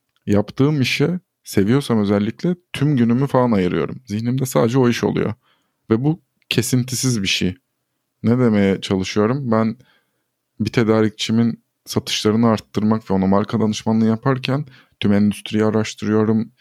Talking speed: 125 wpm